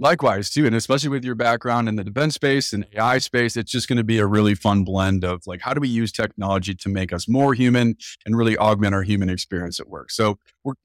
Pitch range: 105-135 Hz